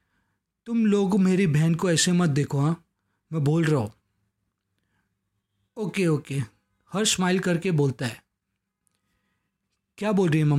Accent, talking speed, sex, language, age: native, 135 wpm, male, Hindi, 20-39